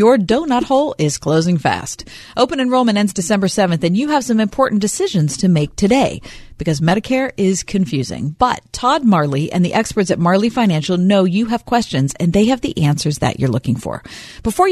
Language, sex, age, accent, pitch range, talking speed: English, female, 40-59, American, 160-245 Hz, 190 wpm